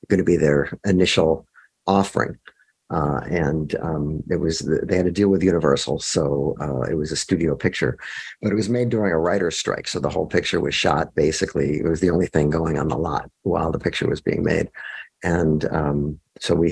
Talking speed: 210 wpm